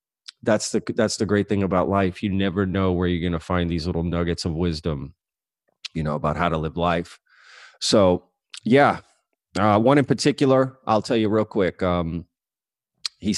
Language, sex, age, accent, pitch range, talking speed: English, male, 30-49, American, 90-135 Hz, 185 wpm